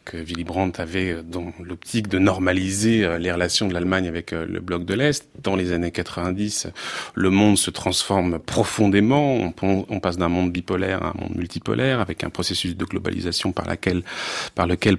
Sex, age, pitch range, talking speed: male, 30-49, 90-110 Hz, 170 wpm